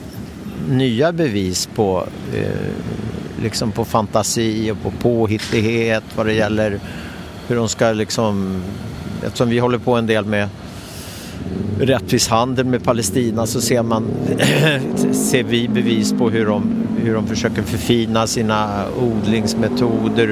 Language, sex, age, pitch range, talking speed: Swedish, male, 50-69, 105-120 Hz, 125 wpm